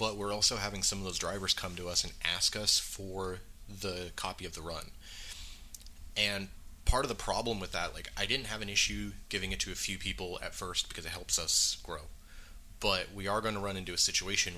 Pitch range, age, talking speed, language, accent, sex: 85-100 Hz, 30-49, 225 wpm, English, American, male